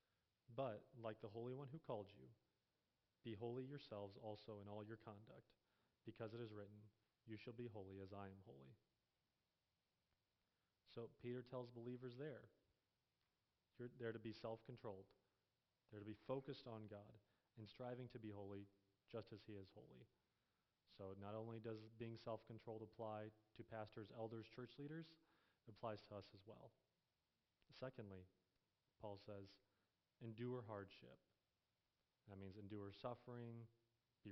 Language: English